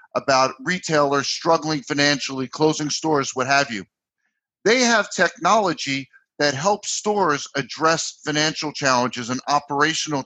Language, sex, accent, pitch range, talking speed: English, male, American, 140-185 Hz, 115 wpm